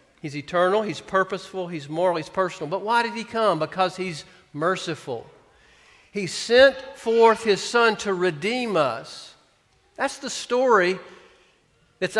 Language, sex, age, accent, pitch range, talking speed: English, male, 50-69, American, 180-225 Hz, 140 wpm